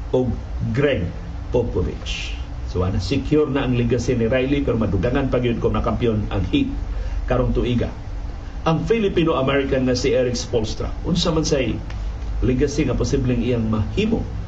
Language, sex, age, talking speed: Filipino, male, 50-69, 140 wpm